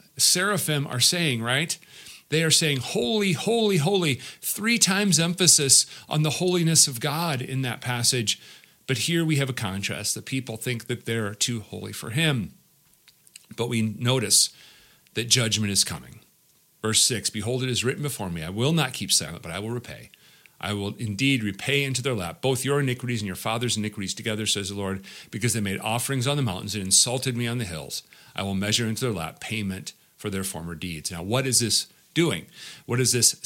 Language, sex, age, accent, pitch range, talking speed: English, male, 40-59, American, 110-140 Hz, 195 wpm